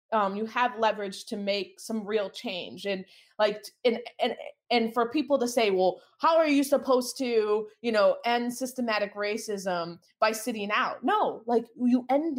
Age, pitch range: 20-39, 185-240 Hz